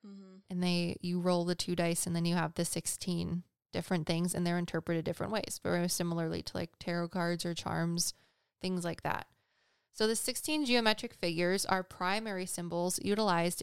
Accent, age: American, 20-39